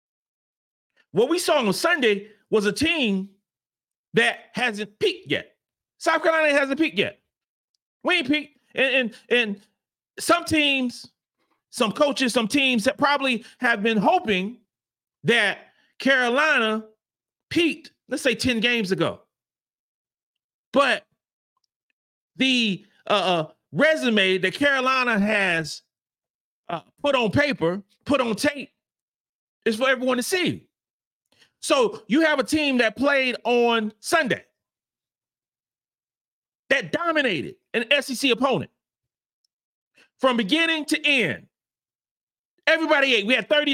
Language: English